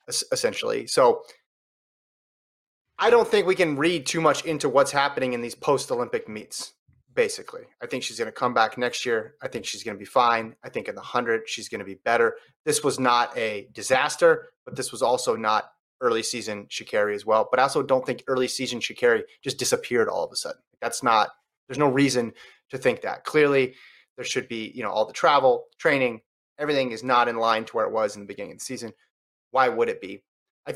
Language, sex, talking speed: English, male, 220 wpm